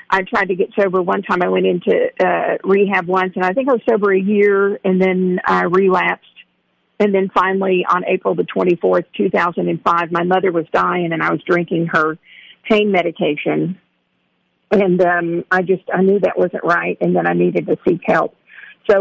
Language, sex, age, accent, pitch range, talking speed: English, female, 50-69, American, 170-195 Hz, 195 wpm